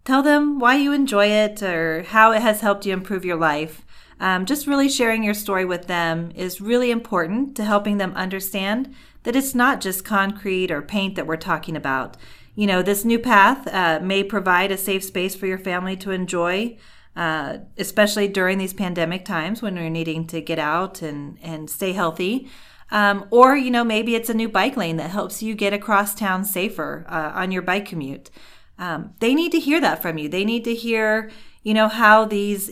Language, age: English, 40-59